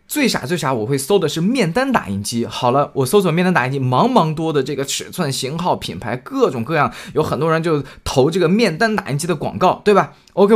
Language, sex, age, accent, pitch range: Chinese, male, 20-39, native, 125-205 Hz